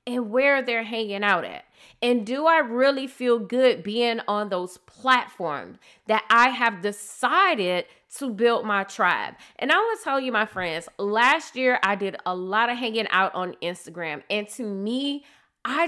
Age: 30-49